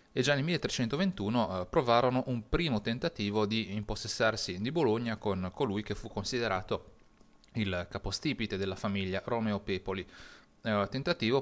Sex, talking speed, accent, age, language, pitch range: male, 135 wpm, native, 30-49, Italian, 100-120 Hz